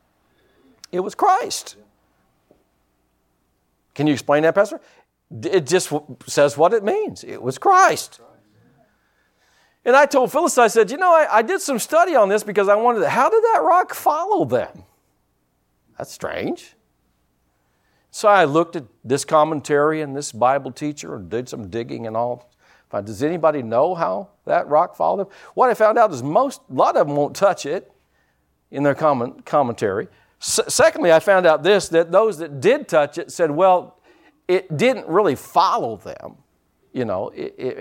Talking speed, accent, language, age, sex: 170 wpm, American, English, 50-69, male